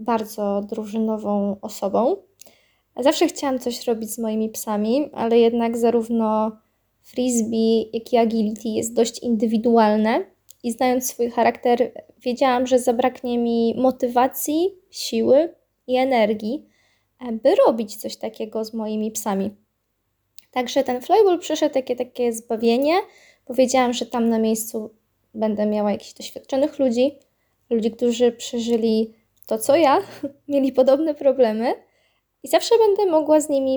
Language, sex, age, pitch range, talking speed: Polish, female, 20-39, 215-255 Hz, 125 wpm